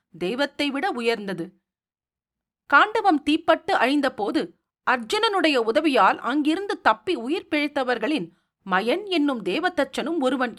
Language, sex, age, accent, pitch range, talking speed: Tamil, female, 40-59, native, 225-330 Hz, 80 wpm